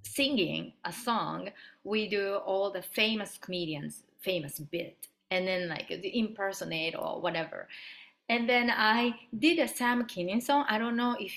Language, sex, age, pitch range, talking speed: English, female, 30-49, 180-225 Hz, 160 wpm